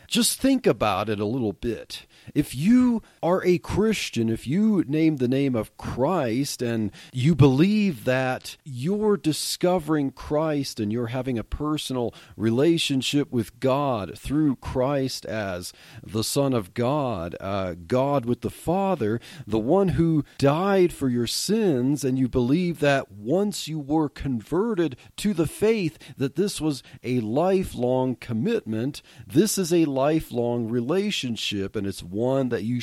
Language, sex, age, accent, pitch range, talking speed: English, male, 40-59, American, 120-165 Hz, 150 wpm